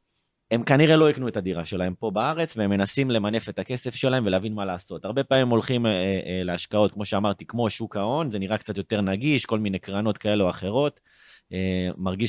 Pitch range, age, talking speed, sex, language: 105-140 Hz, 20-39, 205 wpm, male, Hebrew